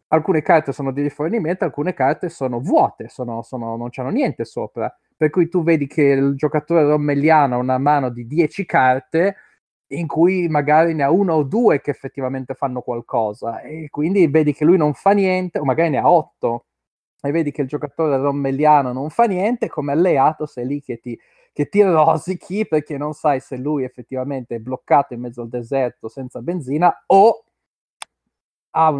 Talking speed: 180 wpm